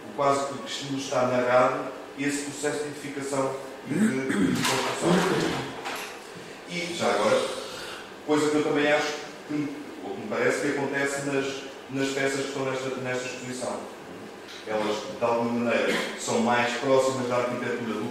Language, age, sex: Portuguese, 40-59, male